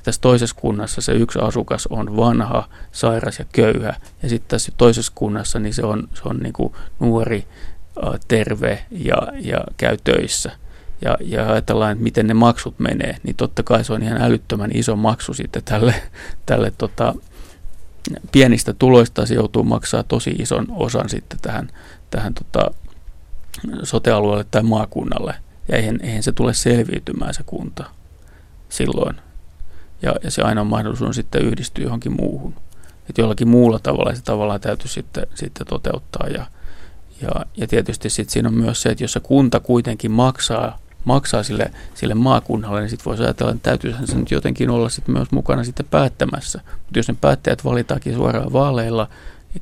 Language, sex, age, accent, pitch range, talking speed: Finnish, male, 30-49, native, 105-120 Hz, 155 wpm